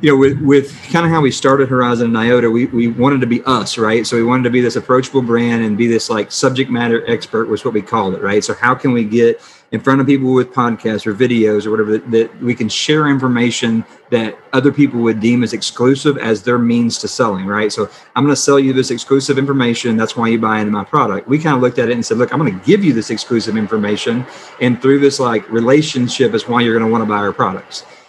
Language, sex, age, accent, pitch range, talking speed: English, male, 40-59, American, 115-135 Hz, 260 wpm